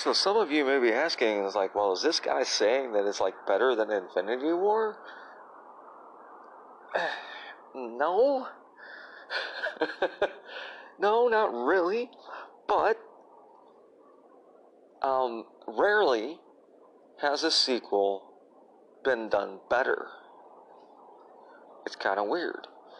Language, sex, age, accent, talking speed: English, male, 40-59, American, 95 wpm